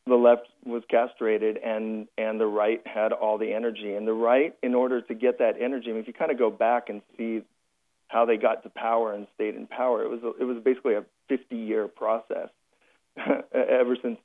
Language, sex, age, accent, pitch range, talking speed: English, male, 40-59, American, 110-130 Hz, 215 wpm